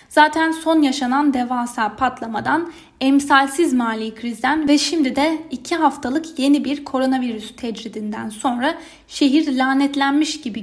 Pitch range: 235-300 Hz